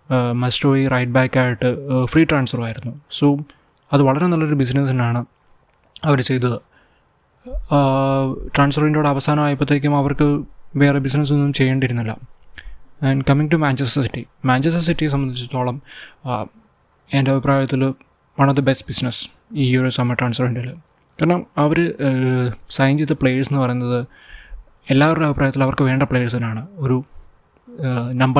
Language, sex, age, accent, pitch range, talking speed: Malayalam, male, 20-39, native, 125-140 Hz, 110 wpm